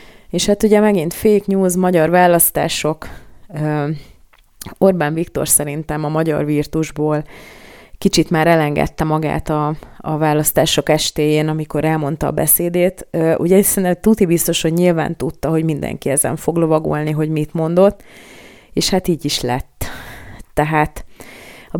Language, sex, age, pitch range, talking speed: Hungarian, female, 30-49, 145-170 Hz, 135 wpm